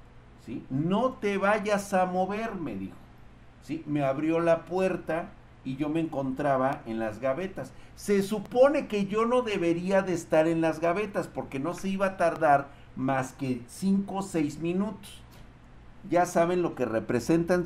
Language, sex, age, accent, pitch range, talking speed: Spanish, male, 50-69, Mexican, 110-180 Hz, 165 wpm